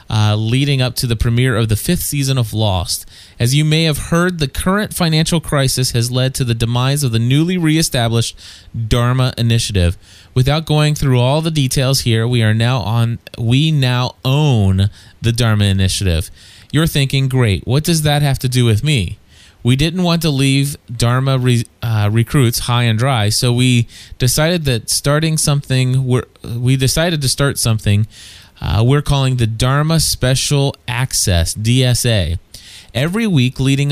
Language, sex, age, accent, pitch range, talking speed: English, male, 30-49, American, 115-145 Hz, 165 wpm